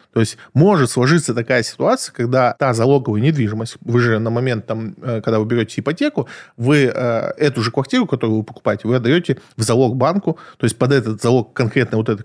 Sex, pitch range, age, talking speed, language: male, 115-155 Hz, 20-39, 190 wpm, Russian